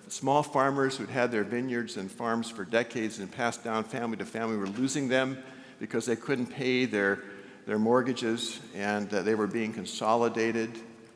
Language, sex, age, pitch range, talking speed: English, male, 60-79, 115-160 Hz, 170 wpm